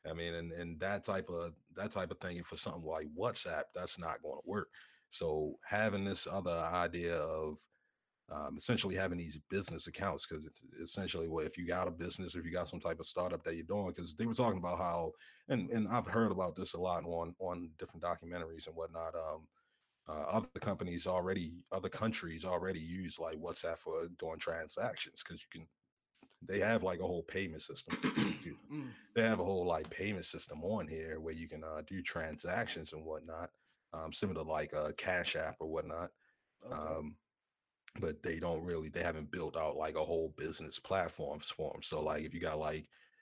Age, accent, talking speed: 30-49, American, 200 wpm